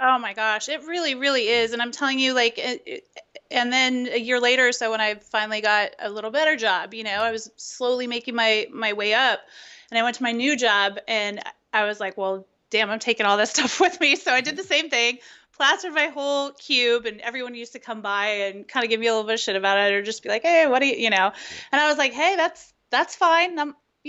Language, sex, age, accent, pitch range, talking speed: English, female, 30-49, American, 215-265 Hz, 255 wpm